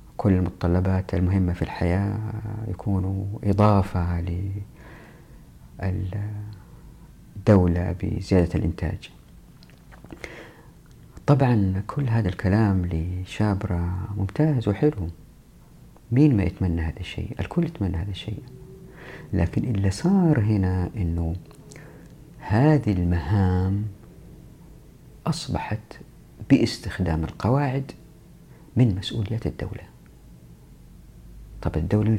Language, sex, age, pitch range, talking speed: Arabic, female, 50-69, 85-110 Hz, 80 wpm